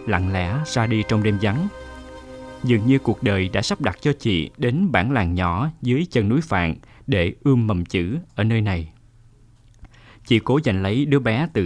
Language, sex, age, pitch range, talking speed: Vietnamese, male, 20-39, 100-130 Hz, 195 wpm